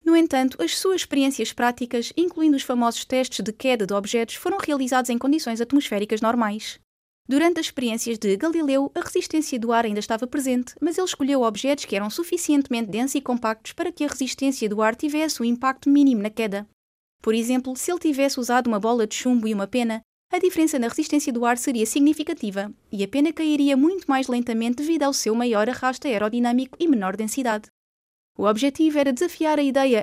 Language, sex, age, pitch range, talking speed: Portuguese, female, 20-39, 230-300 Hz, 195 wpm